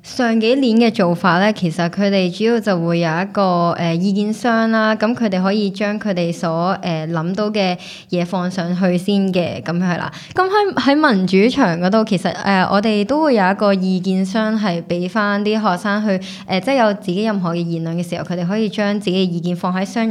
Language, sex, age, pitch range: Chinese, male, 20-39, 175-220 Hz